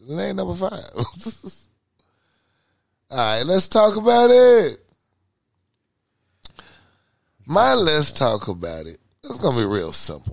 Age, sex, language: 30-49, male, English